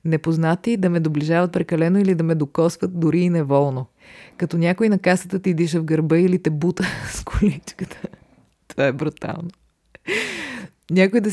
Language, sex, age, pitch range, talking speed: Bulgarian, female, 20-39, 145-180 Hz, 160 wpm